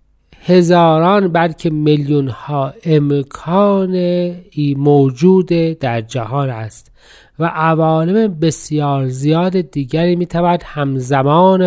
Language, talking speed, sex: Persian, 80 wpm, male